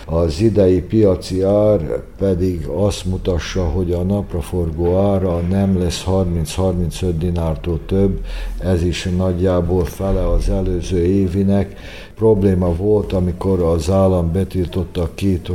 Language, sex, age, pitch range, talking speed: Hungarian, male, 60-79, 90-100 Hz, 115 wpm